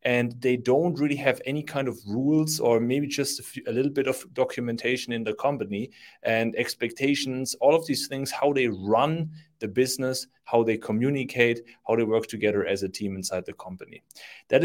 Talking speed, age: 190 wpm, 30-49